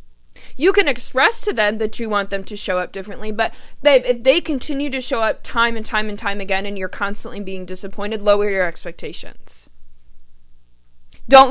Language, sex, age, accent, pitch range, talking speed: English, female, 20-39, American, 190-250 Hz, 190 wpm